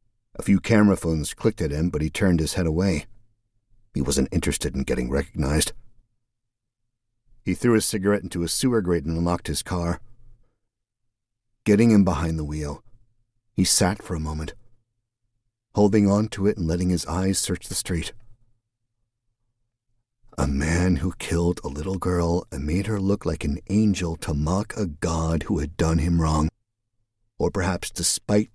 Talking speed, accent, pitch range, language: 165 wpm, American, 85-115 Hz, English